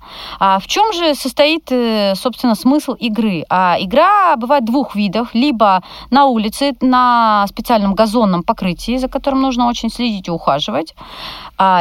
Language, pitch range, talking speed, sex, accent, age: Russian, 190-255 Hz, 125 wpm, female, native, 30-49